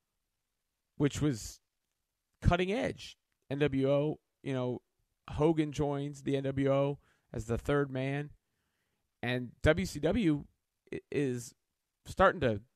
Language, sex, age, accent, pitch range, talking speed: English, male, 30-49, American, 115-155 Hz, 95 wpm